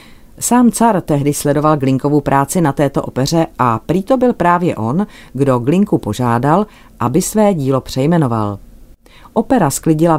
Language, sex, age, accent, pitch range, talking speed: Czech, female, 40-59, native, 125-155 Hz, 140 wpm